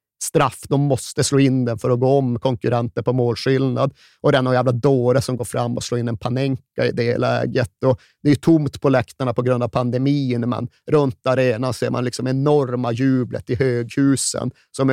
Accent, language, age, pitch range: native, Swedish, 30-49, 120-135 Hz